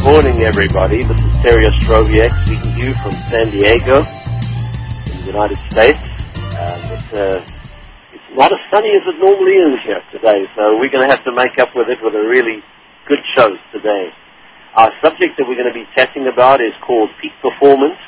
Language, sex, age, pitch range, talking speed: English, male, 50-69, 110-145 Hz, 195 wpm